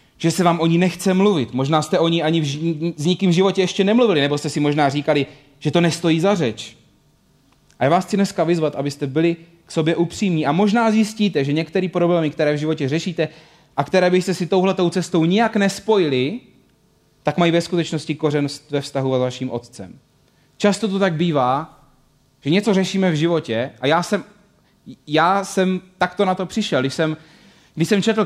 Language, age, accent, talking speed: Czech, 30-49, native, 195 wpm